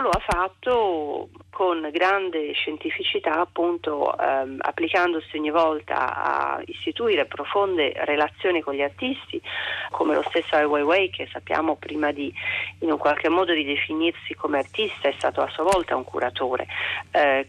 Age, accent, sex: 40-59, native, female